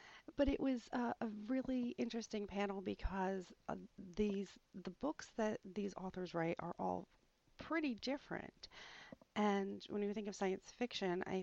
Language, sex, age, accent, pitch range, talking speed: English, female, 40-59, American, 155-205 Hz, 150 wpm